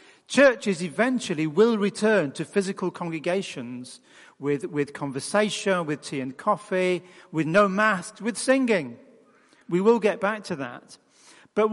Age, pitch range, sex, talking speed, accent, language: 40-59, 175-215 Hz, male, 135 wpm, British, English